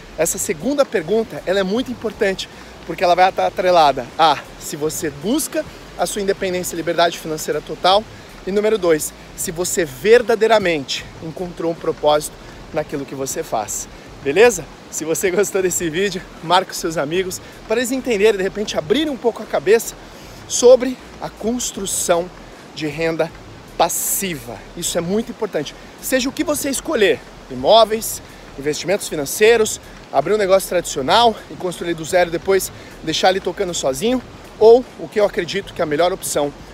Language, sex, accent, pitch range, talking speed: Portuguese, male, Brazilian, 165-220 Hz, 160 wpm